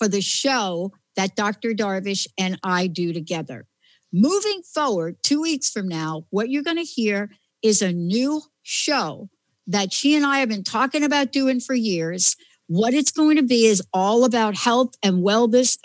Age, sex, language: 60-79, female, English